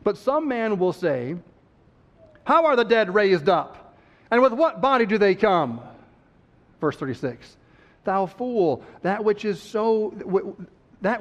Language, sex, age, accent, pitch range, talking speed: English, male, 40-59, American, 180-230 Hz, 145 wpm